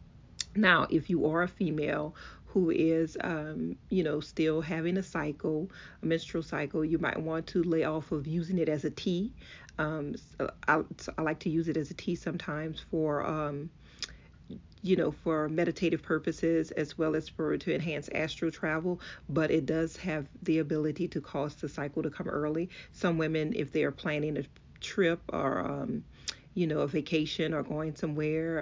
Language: English